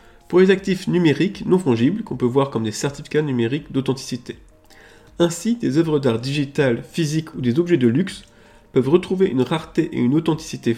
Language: French